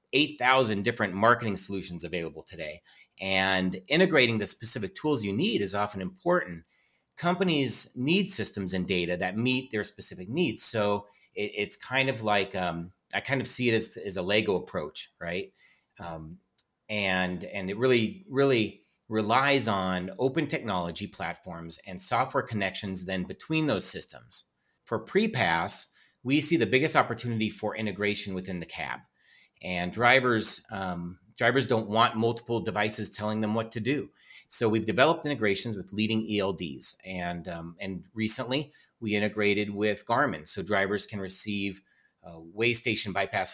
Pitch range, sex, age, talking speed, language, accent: 95-120 Hz, male, 30-49, 150 wpm, English, American